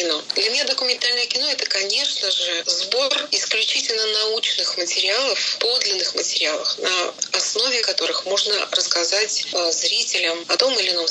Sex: female